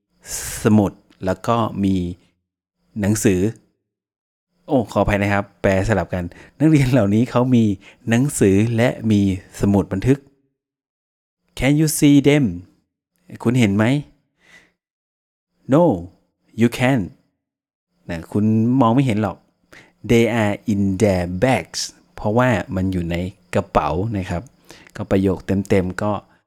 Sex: male